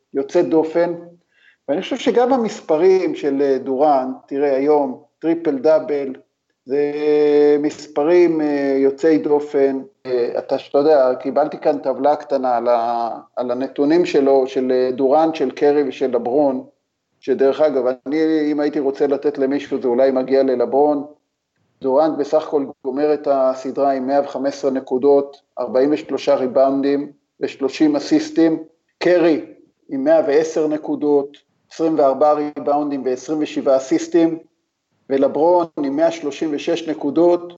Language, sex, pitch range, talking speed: Hebrew, male, 135-160 Hz, 115 wpm